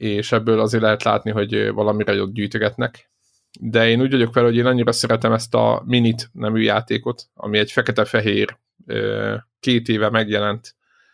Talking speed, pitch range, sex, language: 145 wpm, 110-125 Hz, male, Hungarian